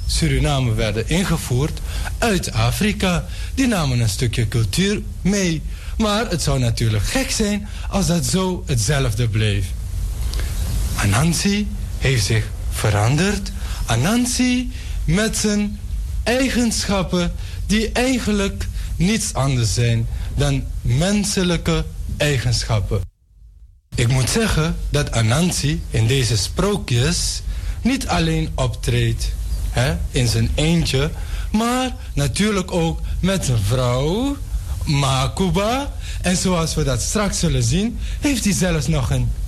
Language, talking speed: Dutch, 110 wpm